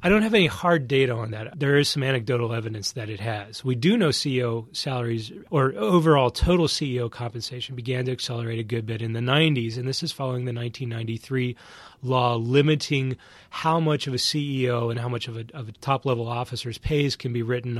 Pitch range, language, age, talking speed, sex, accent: 120-140 Hz, English, 30-49, 200 wpm, male, American